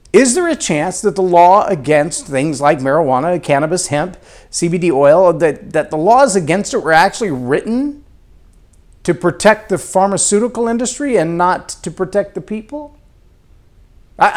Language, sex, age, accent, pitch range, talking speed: English, male, 50-69, American, 150-205 Hz, 150 wpm